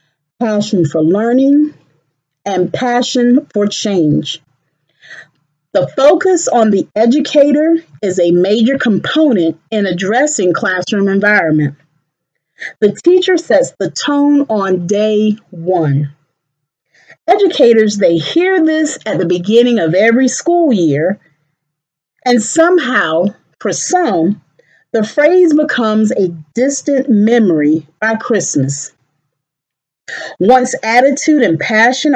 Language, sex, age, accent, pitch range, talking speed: English, female, 40-59, American, 160-255 Hz, 105 wpm